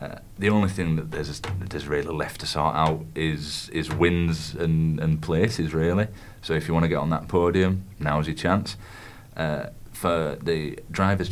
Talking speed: 190 wpm